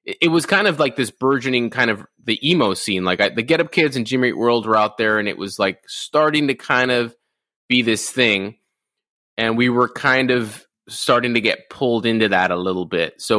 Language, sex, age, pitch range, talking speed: English, male, 20-39, 100-120 Hz, 220 wpm